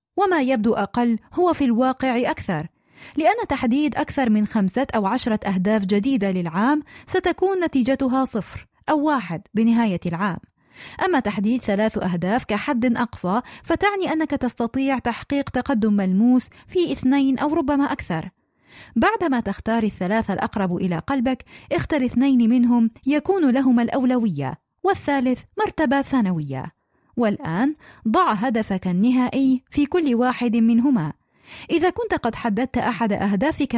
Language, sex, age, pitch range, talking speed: Arabic, female, 30-49, 205-275 Hz, 125 wpm